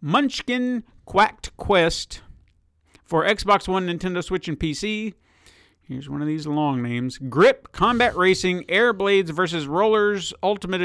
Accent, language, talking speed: American, English, 125 wpm